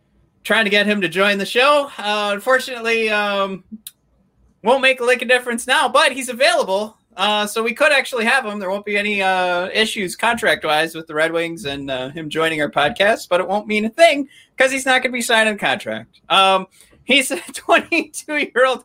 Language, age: English, 30-49